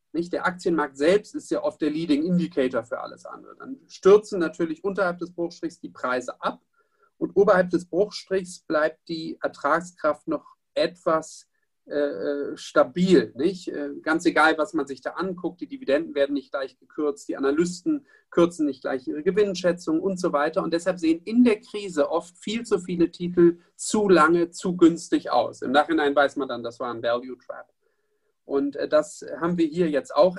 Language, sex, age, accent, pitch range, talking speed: German, male, 40-59, German, 150-200 Hz, 180 wpm